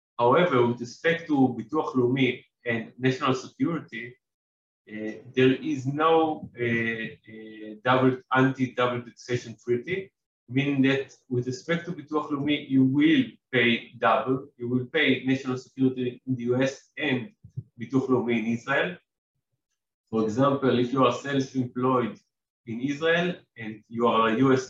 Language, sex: English, male